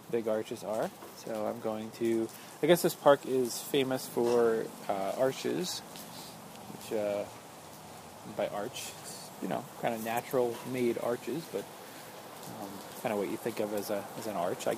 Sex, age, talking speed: male, 20-39, 170 wpm